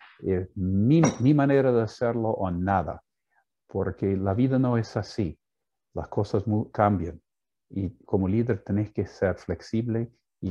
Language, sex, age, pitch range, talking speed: Spanish, male, 50-69, 95-125 Hz, 145 wpm